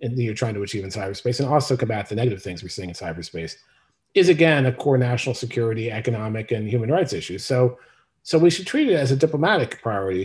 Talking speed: 220 wpm